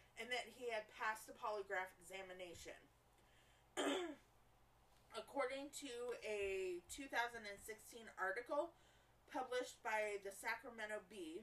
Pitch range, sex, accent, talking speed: 195-245 Hz, female, American, 95 wpm